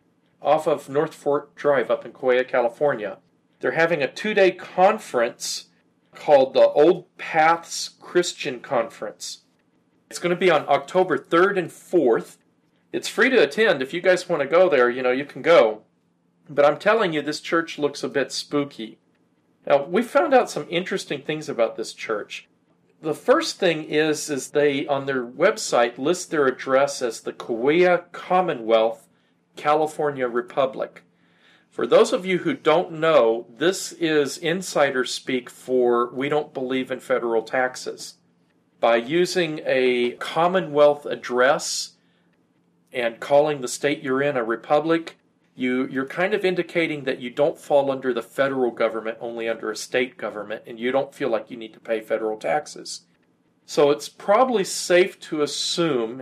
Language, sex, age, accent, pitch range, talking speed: English, male, 40-59, American, 125-170 Hz, 160 wpm